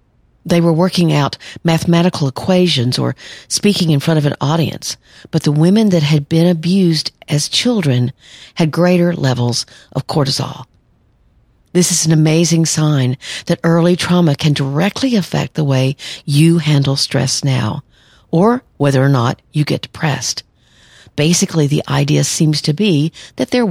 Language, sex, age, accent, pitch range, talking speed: English, female, 50-69, American, 135-175 Hz, 150 wpm